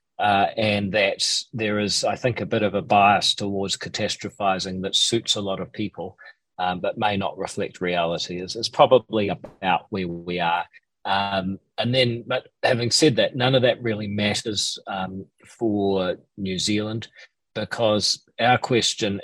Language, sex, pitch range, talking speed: English, male, 95-115 Hz, 160 wpm